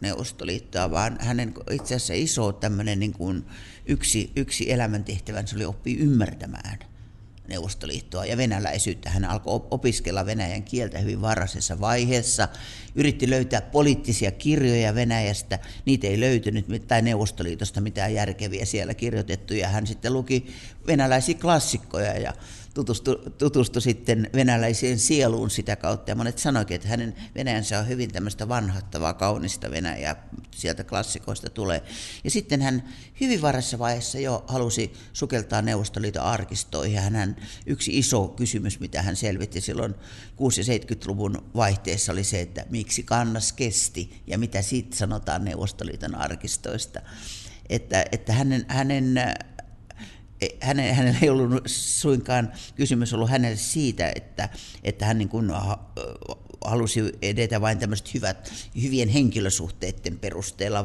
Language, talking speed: Finnish, 125 wpm